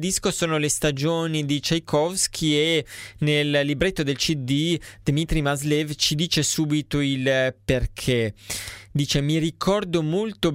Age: 20-39